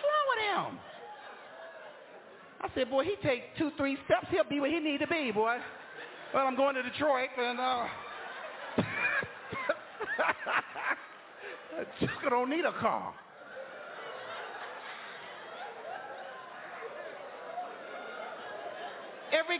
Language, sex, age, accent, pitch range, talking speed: English, male, 50-69, American, 205-280 Hz, 95 wpm